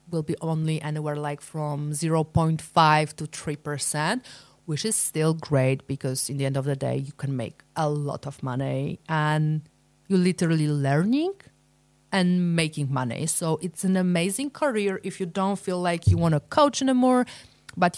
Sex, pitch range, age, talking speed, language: female, 150-180 Hz, 30-49, 165 wpm, English